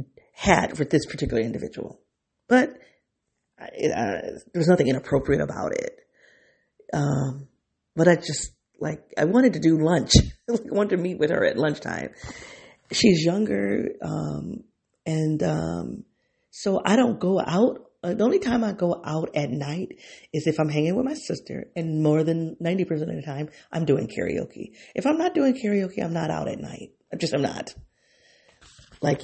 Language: English